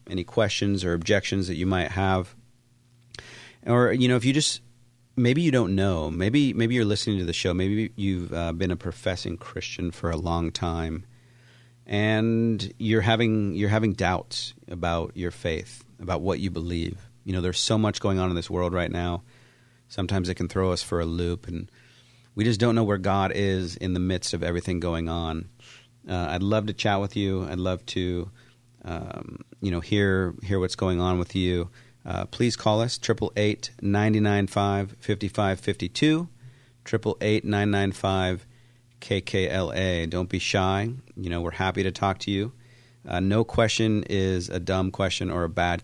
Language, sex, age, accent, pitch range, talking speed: English, male, 40-59, American, 90-120 Hz, 190 wpm